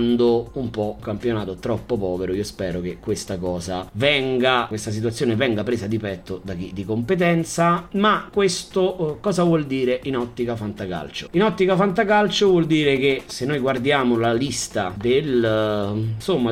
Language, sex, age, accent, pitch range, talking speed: Italian, male, 30-49, native, 105-165 Hz, 155 wpm